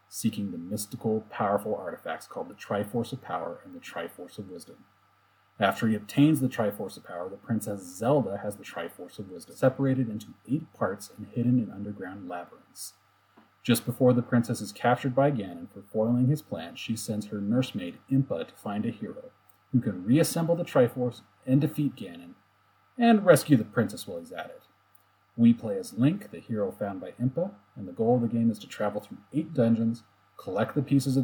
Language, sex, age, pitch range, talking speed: English, male, 30-49, 105-145 Hz, 195 wpm